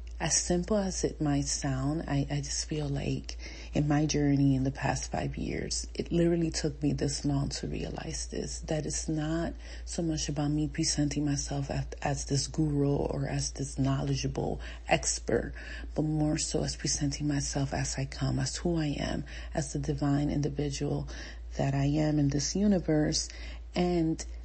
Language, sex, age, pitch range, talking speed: English, female, 30-49, 135-165 Hz, 170 wpm